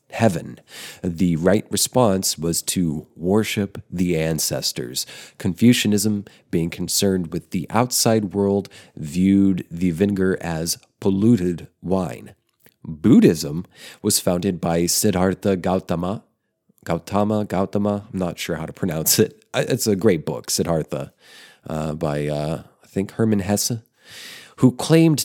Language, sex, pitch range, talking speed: English, male, 90-105 Hz, 120 wpm